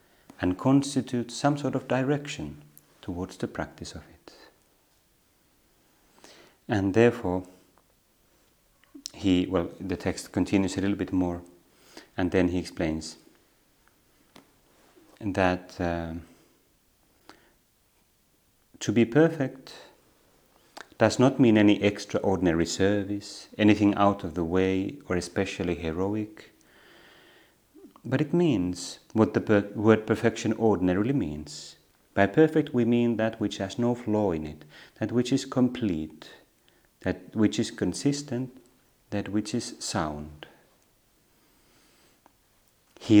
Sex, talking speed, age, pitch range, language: male, 110 wpm, 30-49, 90-120 Hz, Finnish